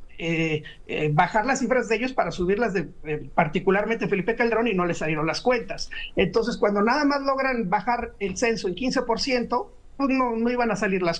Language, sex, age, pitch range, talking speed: Spanish, male, 50-69, 195-240 Hz, 190 wpm